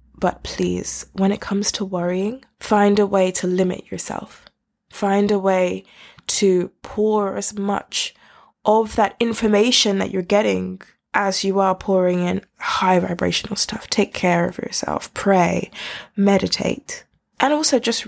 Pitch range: 180-215 Hz